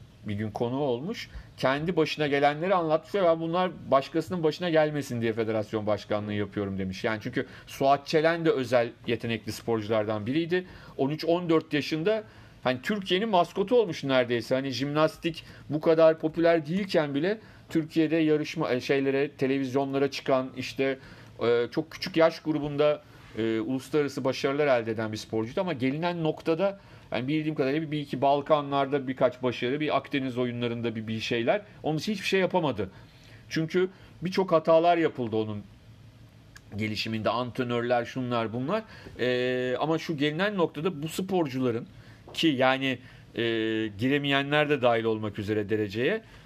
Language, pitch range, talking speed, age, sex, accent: Turkish, 120-160 Hz, 135 wpm, 40-59, male, native